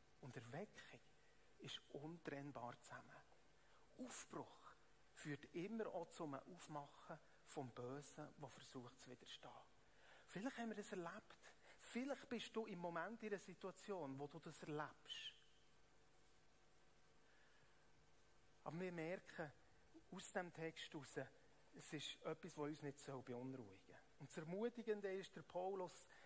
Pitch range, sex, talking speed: 140-175 Hz, male, 125 wpm